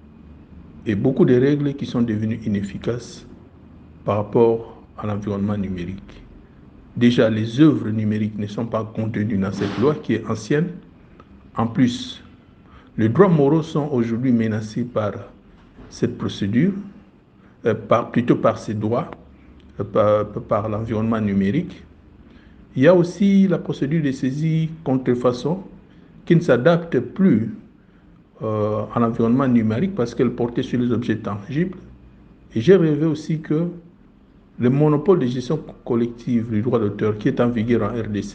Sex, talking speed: male, 145 wpm